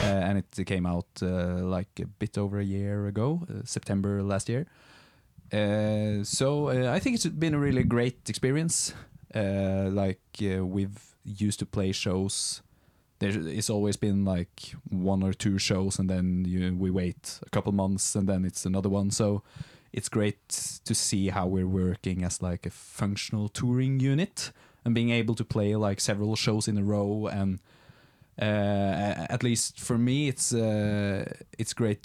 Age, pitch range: 20-39, 95-110 Hz